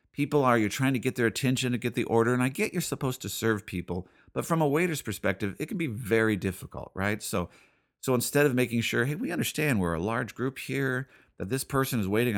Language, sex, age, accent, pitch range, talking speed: English, male, 50-69, American, 105-150 Hz, 240 wpm